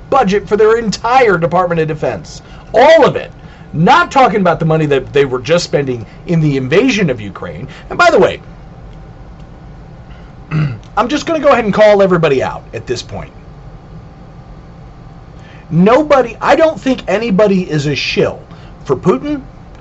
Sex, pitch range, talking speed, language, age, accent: male, 150-225 Hz, 160 wpm, English, 40-59, American